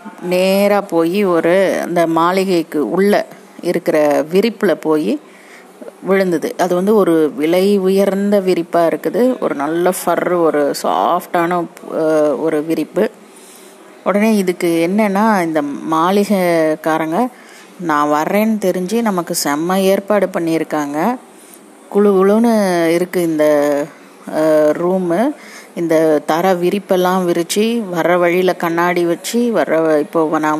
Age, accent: 30-49, native